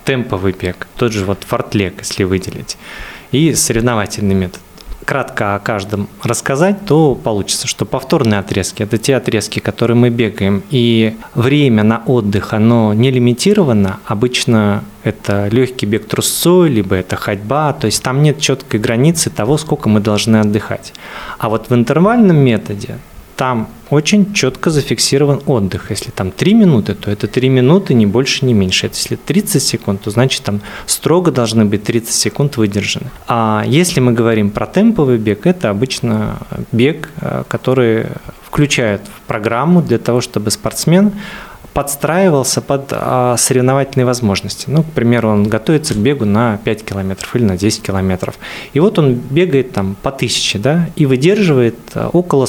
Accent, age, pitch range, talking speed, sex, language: native, 20-39, 105-140 Hz, 155 wpm, male, Russian